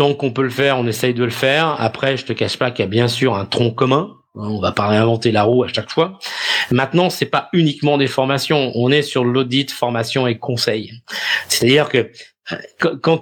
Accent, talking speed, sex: French, 225 wpm, male